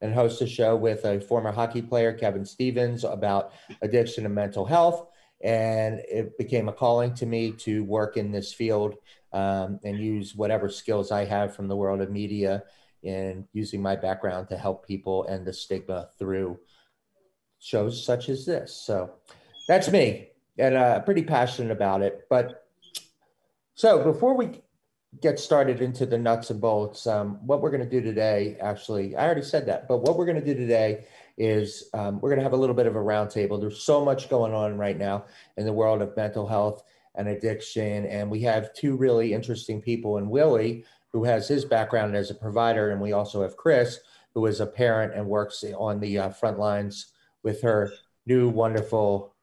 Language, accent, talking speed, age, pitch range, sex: English, American, 190 wpm, 30-49, 100-120 Hz, male